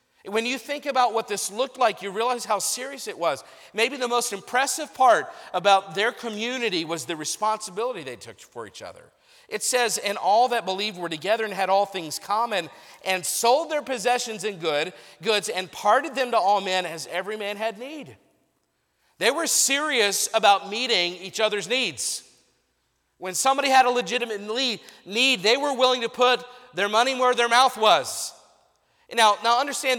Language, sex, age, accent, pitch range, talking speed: English, male, 40-59, American, 190-245 Hz, 175 wpm